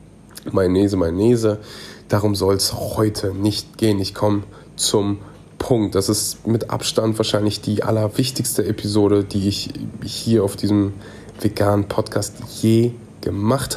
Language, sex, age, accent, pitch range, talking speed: German, male, 30-49, German, 105-125 Hz, 125 wpm